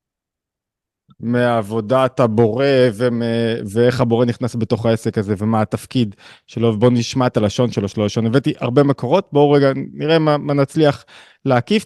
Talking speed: 145 wpm